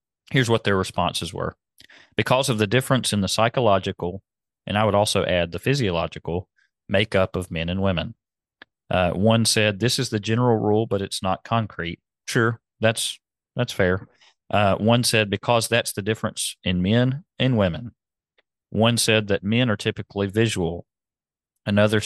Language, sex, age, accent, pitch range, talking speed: English, male, 40-59, American, 95-115 Hz, 160 wpm